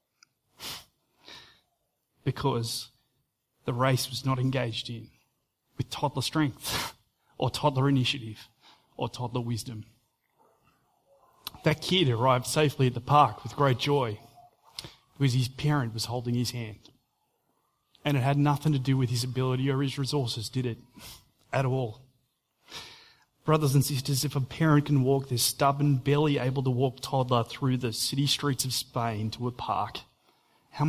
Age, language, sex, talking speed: 30-49, English, male, 145 wpm